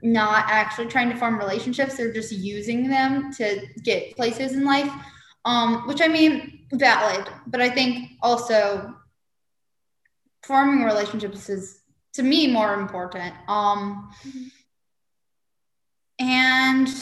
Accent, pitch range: American, 200-265 Hz